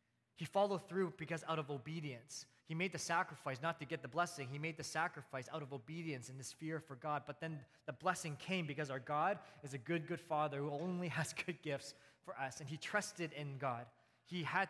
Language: English